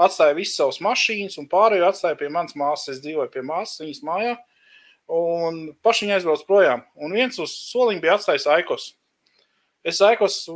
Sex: male